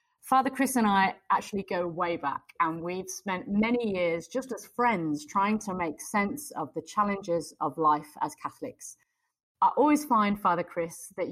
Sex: female